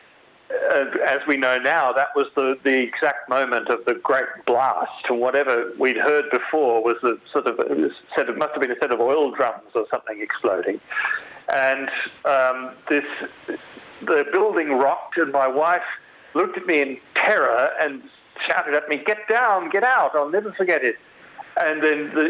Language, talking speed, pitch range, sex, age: English, 180 wpm, 130-185 Hz, male, 50-69